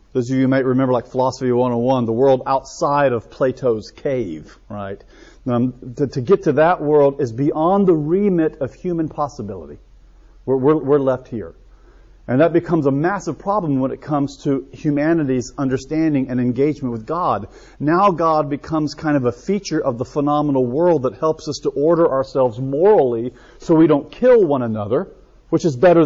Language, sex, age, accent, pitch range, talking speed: English, male, 40-59, American, 130-170 Hz, 180 wpm